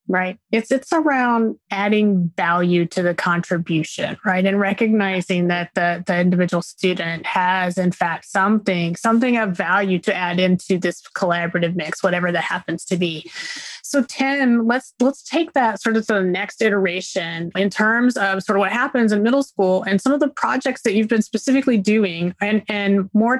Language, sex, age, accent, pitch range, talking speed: English, female, 30-49, American, 190-255 Hz, 180 wpm